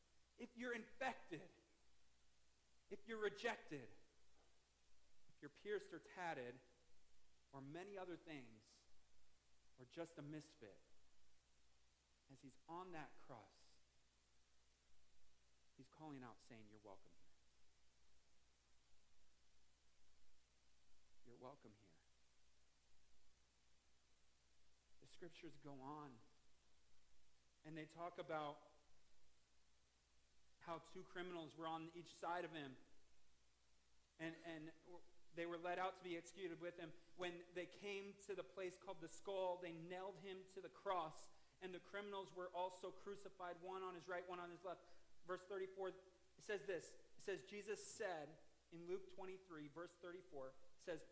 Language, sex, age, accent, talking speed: English, male, 40-59, American, 125 wpm